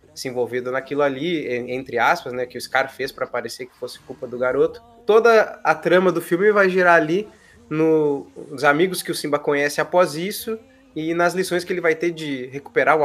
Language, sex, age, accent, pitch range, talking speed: Portuguese, male, 20-39, Brazilian, 135-185 Hz, 205 wpm